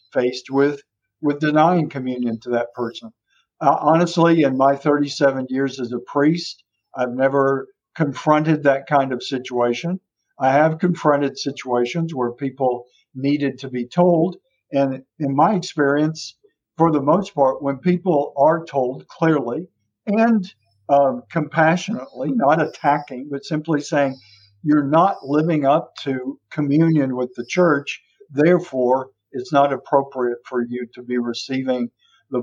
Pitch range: 125-160 Hz